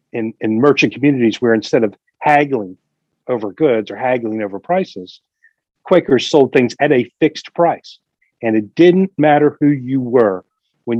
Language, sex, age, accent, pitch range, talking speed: English, male, 40-59, American, 115-155 Hz, 160 wpm